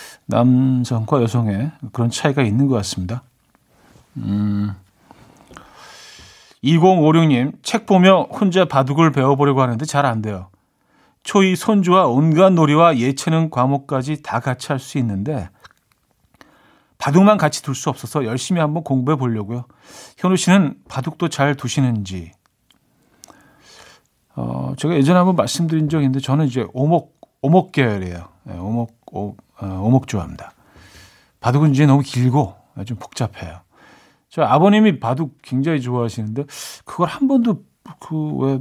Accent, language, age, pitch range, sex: native, Korean, 40-59, 115-155 Hz, male